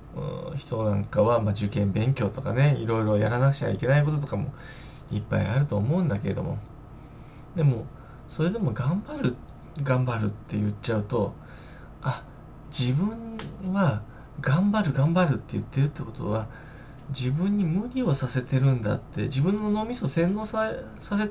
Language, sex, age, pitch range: Japanese, male, 20-39, 120-160 Hz